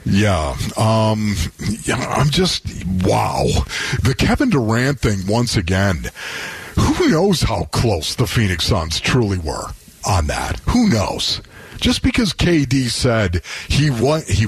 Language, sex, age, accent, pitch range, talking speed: English, male, 50-69, American, 105-155 Hz, 135 wpm